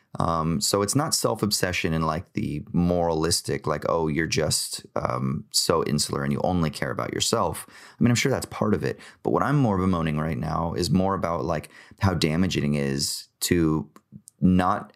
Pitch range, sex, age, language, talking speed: 80-110 Hz, male, 30-49, English, 190 wpm